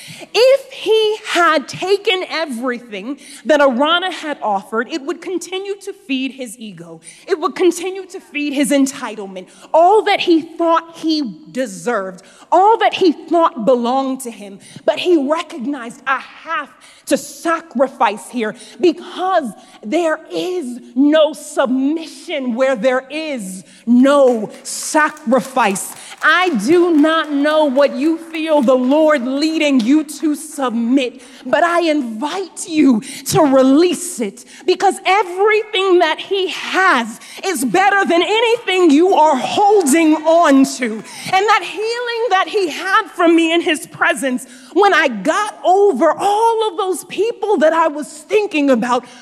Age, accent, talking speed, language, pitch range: 30-49, American, 135 wpm, English, 265-360 Hz